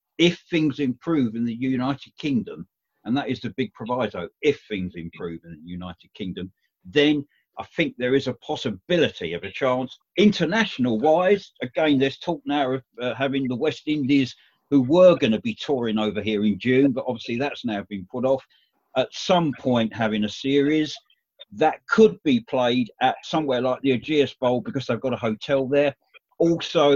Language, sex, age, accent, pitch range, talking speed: English, male, 50-69, British, 115-150 Hz, 180 wpm